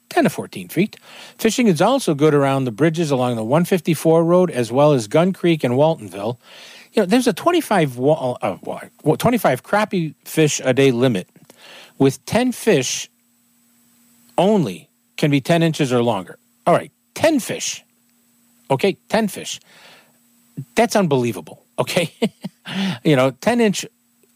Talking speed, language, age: 145 wpm, English, 40-59